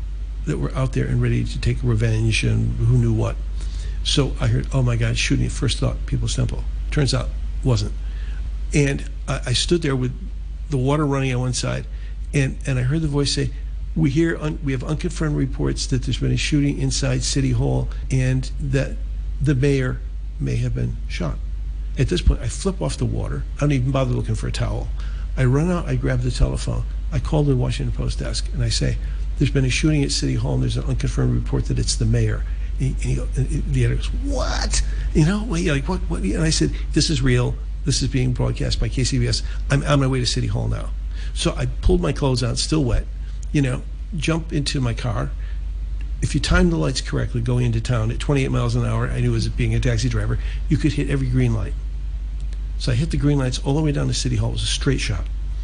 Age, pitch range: 50-69, 105-140 Hz